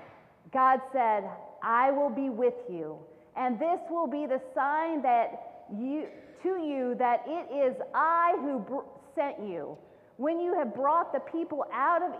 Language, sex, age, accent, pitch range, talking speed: English, female, 40-59, American, 235-300 Hz, 160 wpm